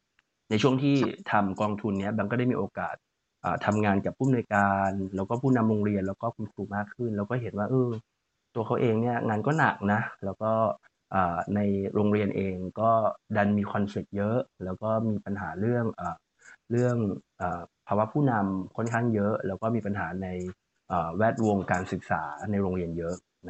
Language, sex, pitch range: Thai, male, 95-115 Hz